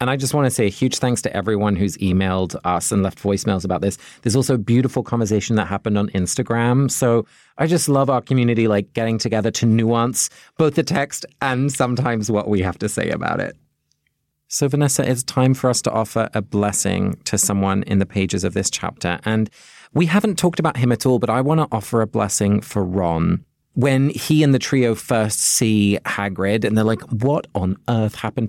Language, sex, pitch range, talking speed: English, male, 105-140 Hz, 215 wpm